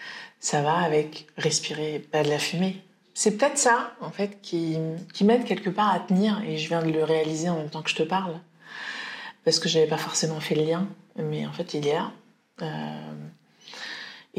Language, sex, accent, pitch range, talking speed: French, female, French, 155-210 Hz, 205 wpm